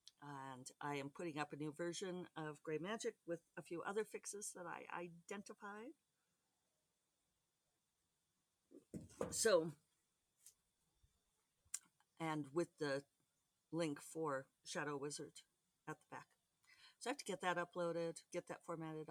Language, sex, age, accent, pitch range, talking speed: English, female, 50-69, American, 150-205 Hz, 125 wpm